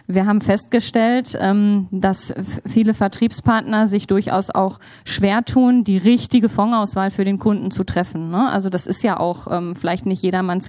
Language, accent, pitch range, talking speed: German, German, 190-230 Hz, 150 wpm